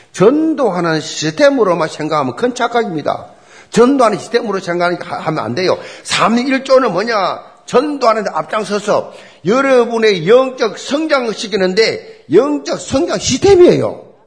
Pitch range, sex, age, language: 175-250 Hz, male, 40-59, Korean